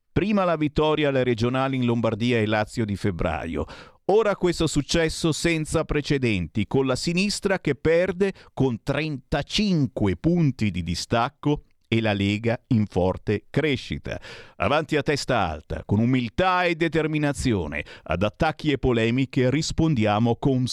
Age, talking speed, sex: 50-69, 135 wpm, male